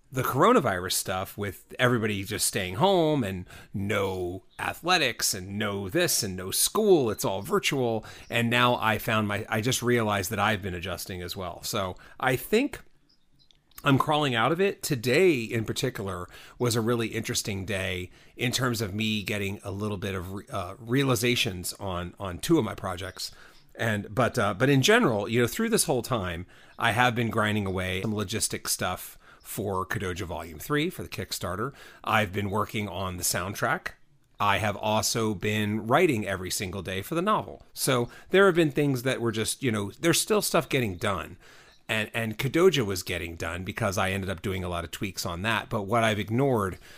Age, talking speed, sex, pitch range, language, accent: 30-49, 185 wpm, male, 100-125 Hz, English, American